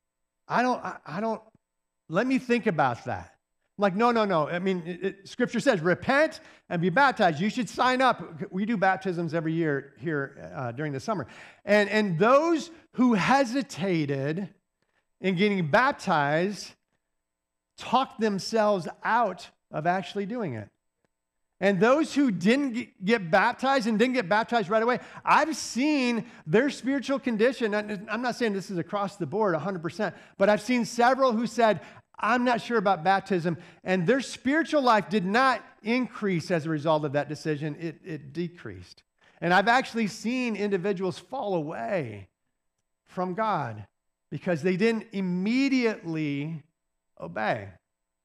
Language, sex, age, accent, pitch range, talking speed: English, male, 50-69, American, 160-235 Hz, 150 wpm